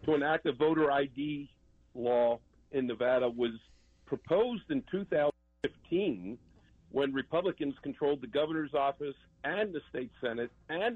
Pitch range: 120-150 Hz